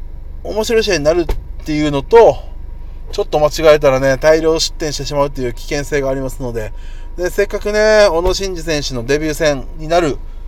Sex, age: male, 20-39